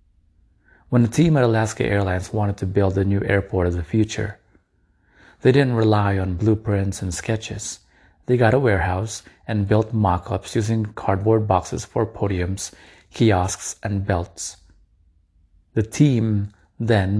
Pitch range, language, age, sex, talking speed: 95-110 Hz, English, 30-49, male, 140 wpm